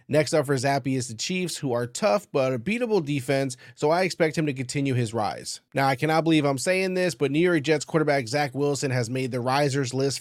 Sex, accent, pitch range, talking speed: male, American, 130-155 Hz, 240 wpm